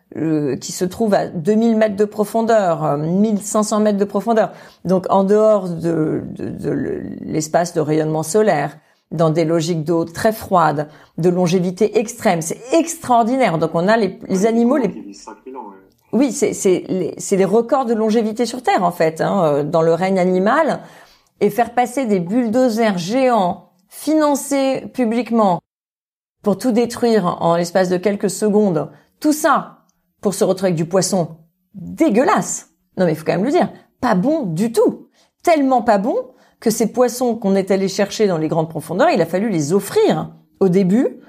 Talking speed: 170 wpm